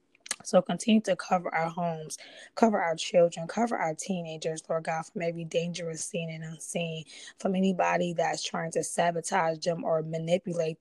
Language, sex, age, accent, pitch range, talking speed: English, female, 20-39, American, 165-185 Hz, 160 wpm